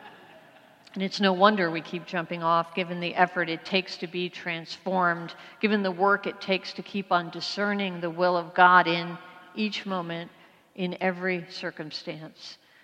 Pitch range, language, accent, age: 170-195 Hz, English, American, 50-69